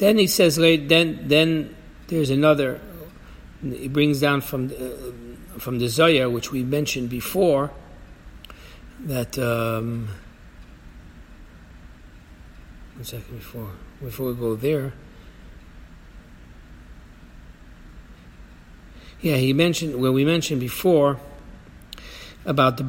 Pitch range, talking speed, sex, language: 100-150 Hz, 95 wpm, male, English